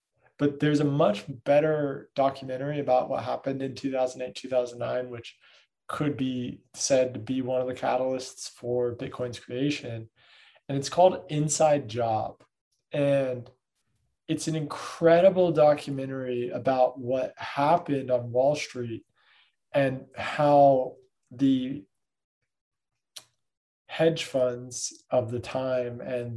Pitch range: 125-145 Hz